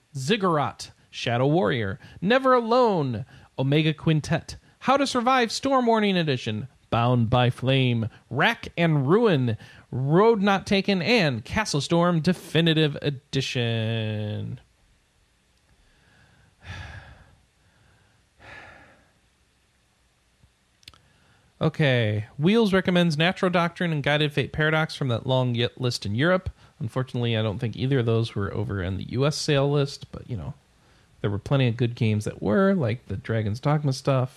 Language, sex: English, male